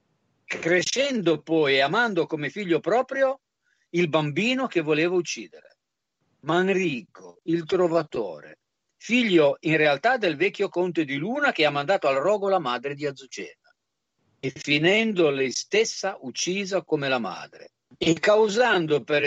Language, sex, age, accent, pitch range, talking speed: Italian, male, 50-69, native, 140-190 Hz, 135 wpm